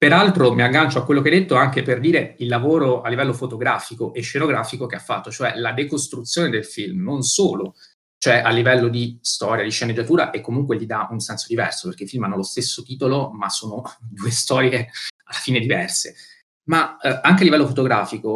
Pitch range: 115-145 Hz